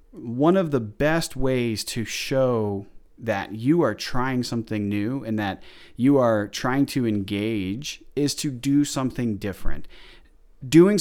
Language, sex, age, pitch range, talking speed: English, male, 30-49, 110-140 Hz, 140 wpm